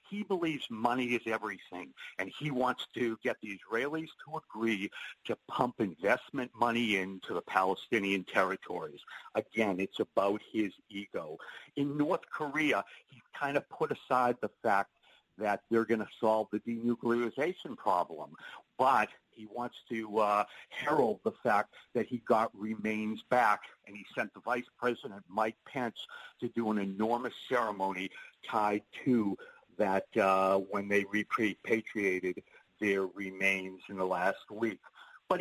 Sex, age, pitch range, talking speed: male, 50-69, 105-130 Hz, 145 wpm